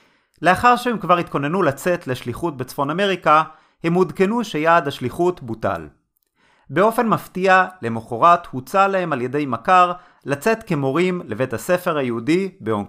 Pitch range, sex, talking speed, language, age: 130-180 Hz, male, 125 wpm, Hebrew, 30-49